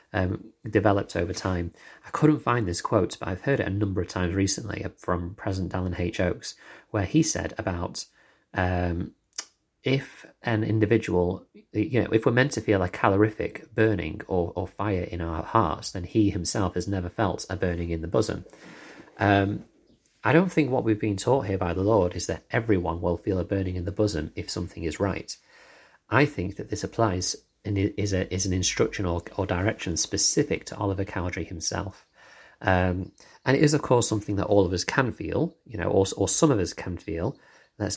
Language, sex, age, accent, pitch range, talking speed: English, male, 30-49, British, 90-105 Hz, 200 wpm